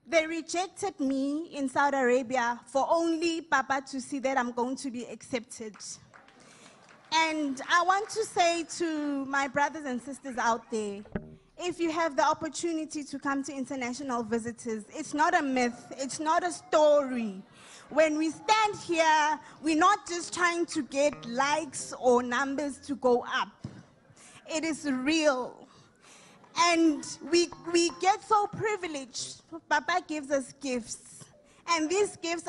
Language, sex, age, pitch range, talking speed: English, female, 20-39, 275-340 Hz, 145 wpm